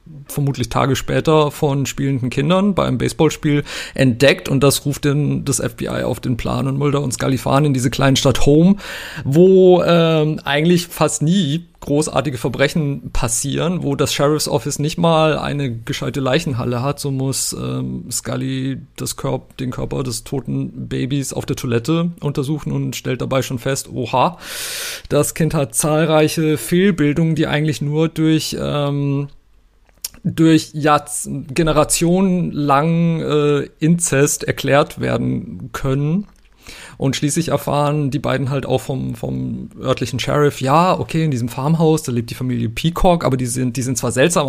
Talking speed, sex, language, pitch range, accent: 155 wpm, male, German, 130-155 Hz, German